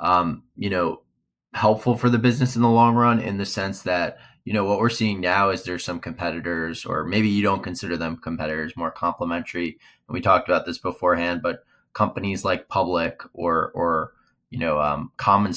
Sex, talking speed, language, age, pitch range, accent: male, 195 wpm, English, 20-39, 85-110 Hz, American